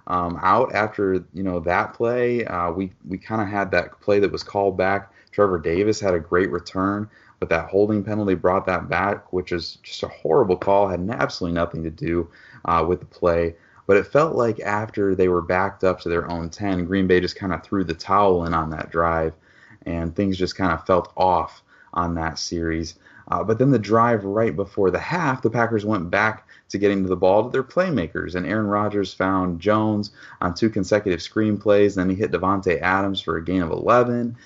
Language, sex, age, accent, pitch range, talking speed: English, male, 30-49, American, 90-105 Hz, 220 wpm